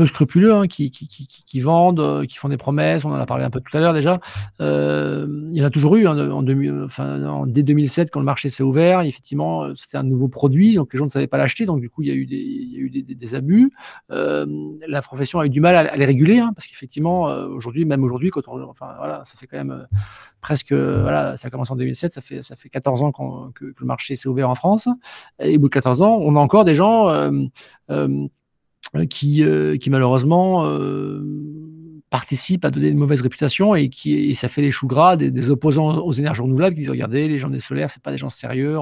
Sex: male